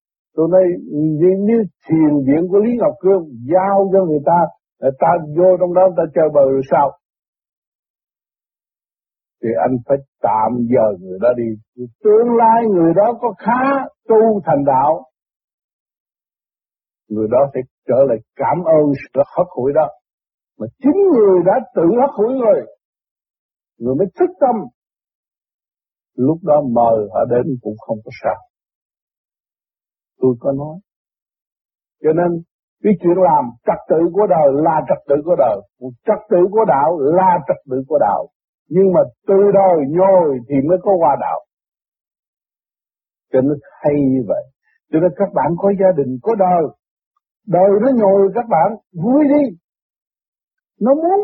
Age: 60-79